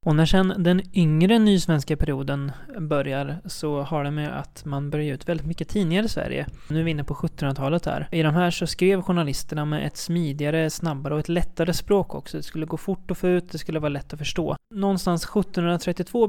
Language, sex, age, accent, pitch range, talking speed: Swedish, male, 20-39, native, 145-175 Hz, 215 wpm